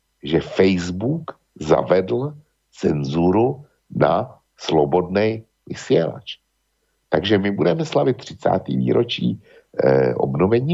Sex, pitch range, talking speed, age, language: male, 95-140 Hz, 85 wpm, 60-79, Slovak